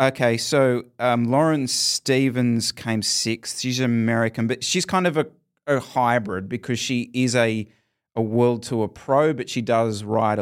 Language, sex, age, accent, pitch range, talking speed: English, male, 30-49, Australian, 110-130 Hz, 160 wpm